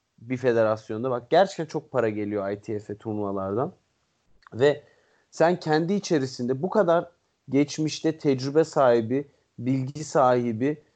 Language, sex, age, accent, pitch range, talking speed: Turkish, male, 40-59, native, 130-175 Hz, 110 wpm